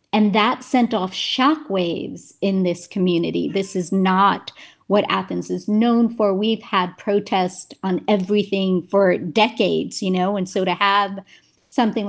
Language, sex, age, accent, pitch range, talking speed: English, female, 40-59, American, 190-230 Hz, 150 wpm